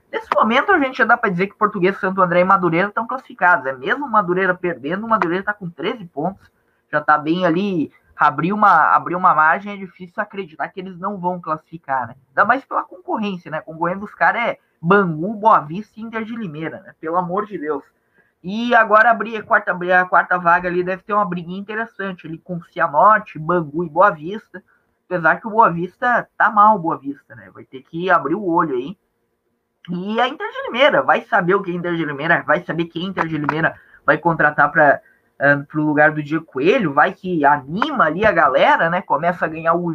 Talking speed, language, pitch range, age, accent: 220 wpm, Portuguese, 165-220 Hz, 20-39, Brazilian